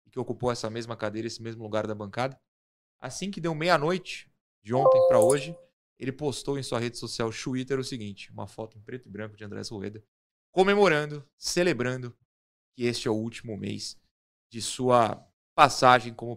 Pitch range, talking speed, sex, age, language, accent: 110-160 Hz, 175 wpm, male, 20-39, Portuguese, Brazilian